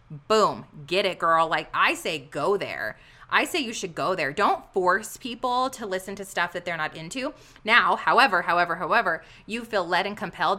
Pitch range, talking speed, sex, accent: 170-240 Hz, 200 wpm, female, American